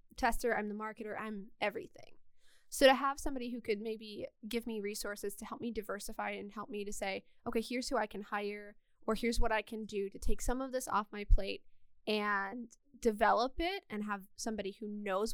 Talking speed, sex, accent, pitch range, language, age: 205 wpm, female, American, 210-255 Hz, English, 10-29